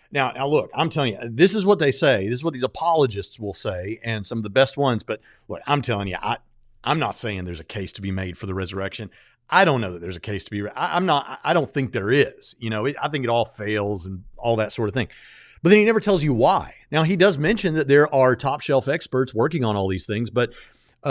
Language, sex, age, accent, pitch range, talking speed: English, male, 40-59, American, 110-155 Hz, 275 wpm